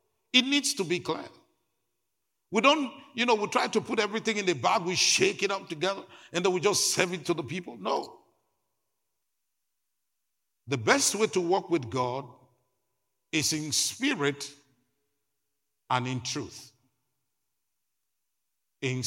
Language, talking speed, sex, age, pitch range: English, 145 wpm, male, 50-69, 135-205 Hz